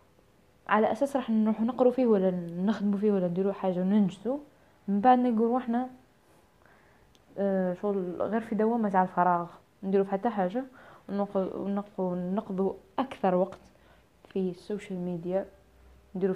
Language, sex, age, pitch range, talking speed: Arabic, female, 20-39, 185-220 Hz, 130 wpm